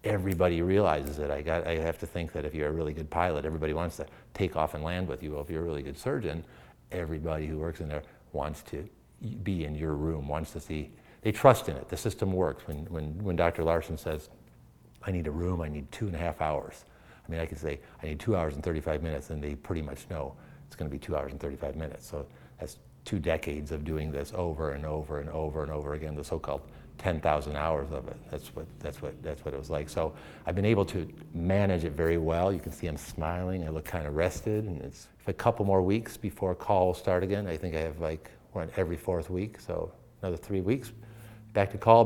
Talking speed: 245 wpm